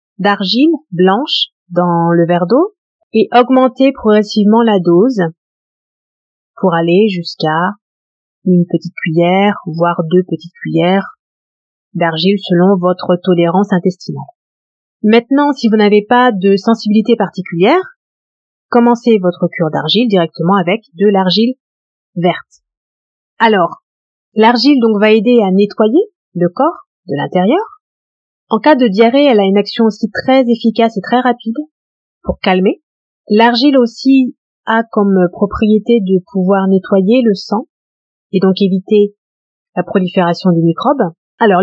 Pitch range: 180-240 Hz